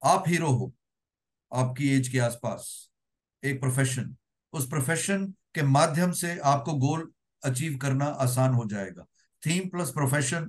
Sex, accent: male, native